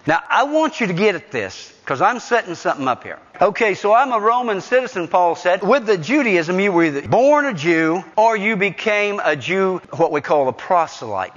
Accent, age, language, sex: American, 50-69, English, male